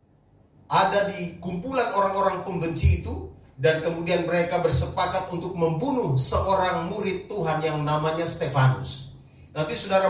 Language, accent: English, Indonesian